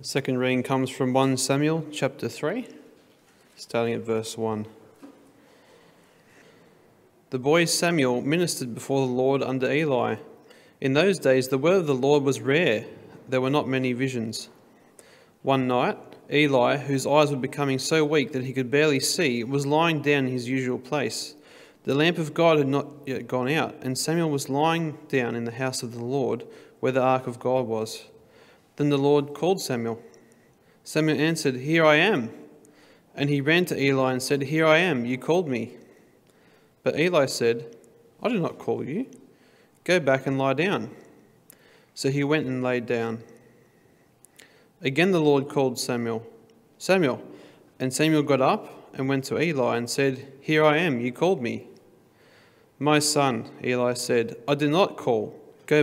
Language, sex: English, male